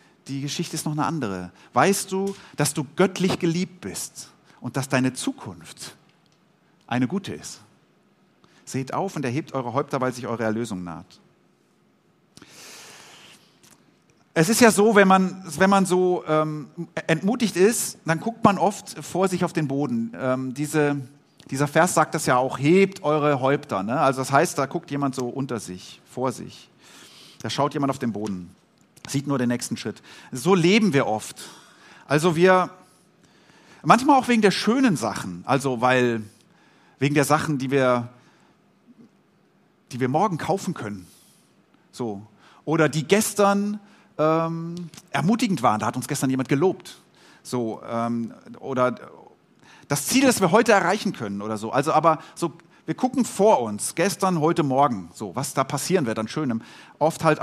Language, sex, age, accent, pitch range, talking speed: German, male, 40-59, German, 130-185 Hz, 160 wpm